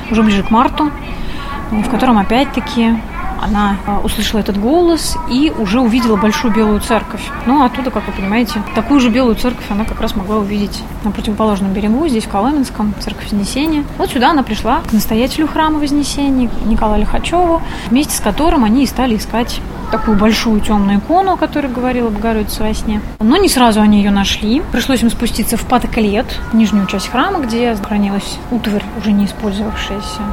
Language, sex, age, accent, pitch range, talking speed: Russian, female, 20-39, native, 210-260 Hz, 170 wpm